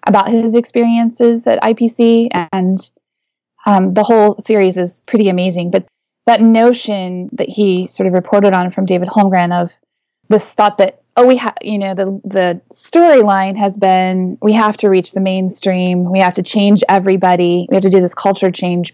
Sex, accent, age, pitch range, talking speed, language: female, American, 20-39, 180-215 Hz, 180 wpm, English